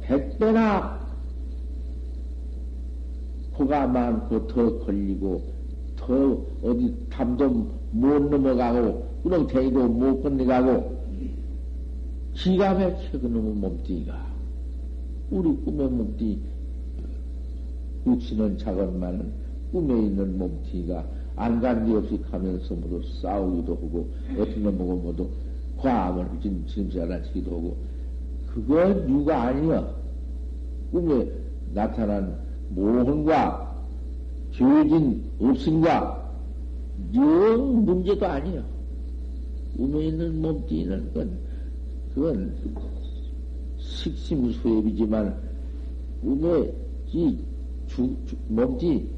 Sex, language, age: male, Korean, 60-79